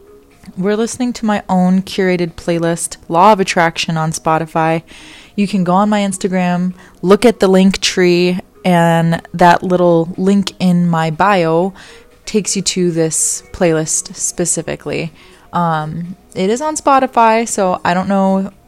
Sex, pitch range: female, 165-205 Hz